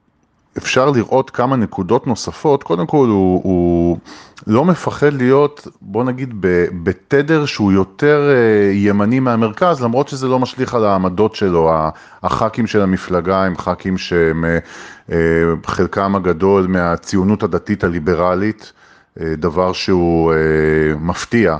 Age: 30-49